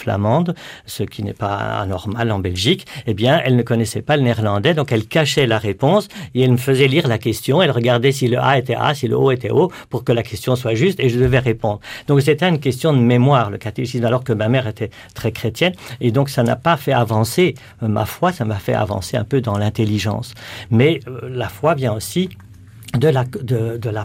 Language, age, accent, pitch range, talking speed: French, 50-69, French, 110-140 Hz, 230 wpm